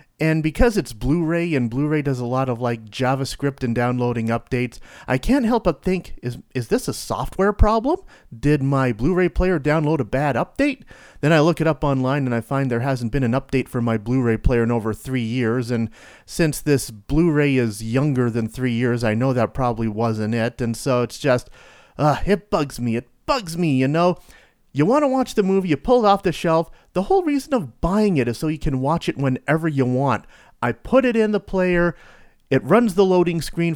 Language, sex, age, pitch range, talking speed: English, male, 30-49, 125-175 Hz, 215 wpm